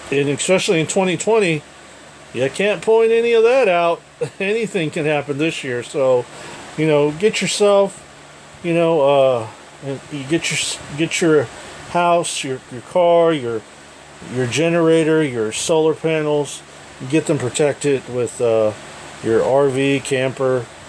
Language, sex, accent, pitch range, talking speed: English, male, American, 120-155 Hz, 140 wpm